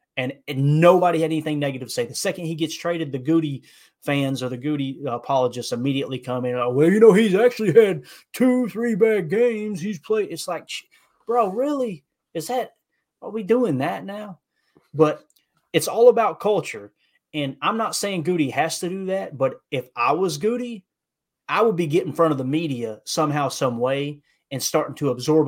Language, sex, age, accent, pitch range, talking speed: English, male, 30-49, American, 135-180 Hz, 190 wpm